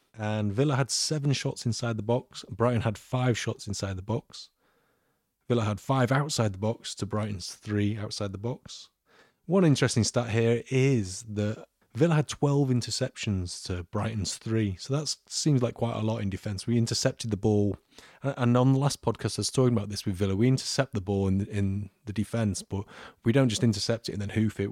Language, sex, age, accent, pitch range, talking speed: English, male, 30-49, British, 100-115 Hz, 205 wpm